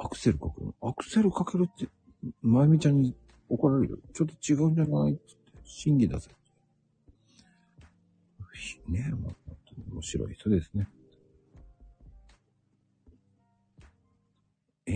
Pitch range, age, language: 80-125 Hz, 60-79, Japanese